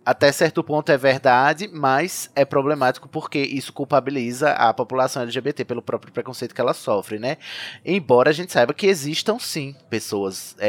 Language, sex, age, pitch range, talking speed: Portuguese, male, 20-39, 120-150 Hz, 165 wpm